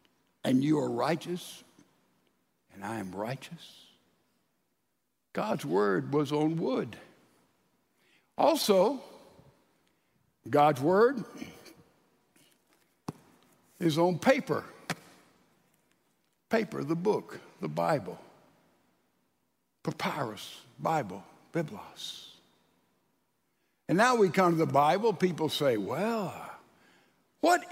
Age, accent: 60-79, American